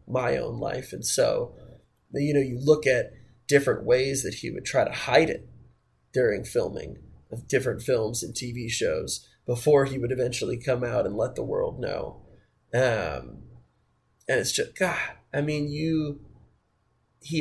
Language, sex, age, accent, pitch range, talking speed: English, male, 20-39, American, 125-165 Hz, 160 wpm